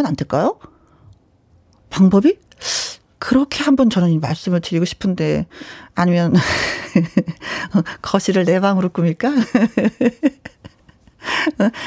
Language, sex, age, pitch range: Korean, female, 40-59, 185-275 Hz